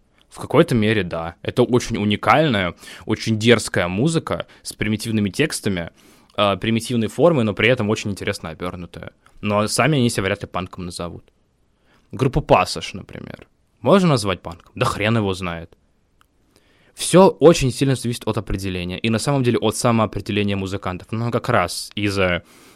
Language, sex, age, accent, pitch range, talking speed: Russian, male, 20-39, native, 95-120 Hz, 150 wpm